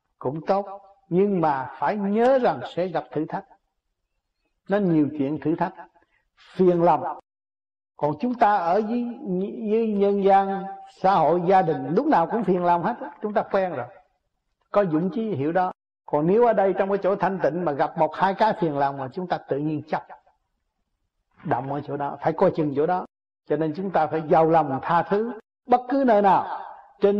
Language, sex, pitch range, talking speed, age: Vietnamese, male, 150-205 Hz, 200 wpm, 60-79